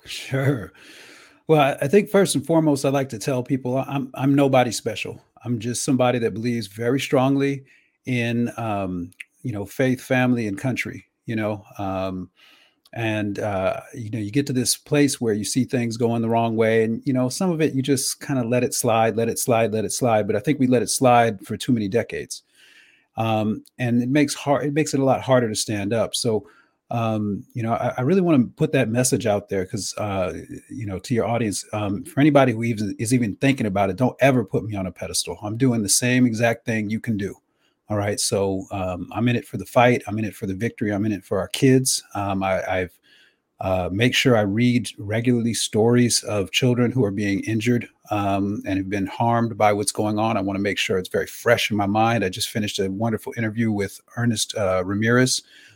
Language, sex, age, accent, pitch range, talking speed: English, male, 40-59, American, 105-130 Hz, 225 wpm